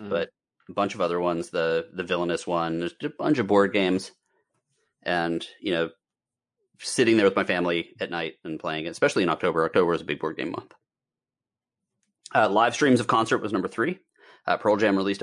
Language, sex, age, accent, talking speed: English, male, 30-49, American, 200 wpm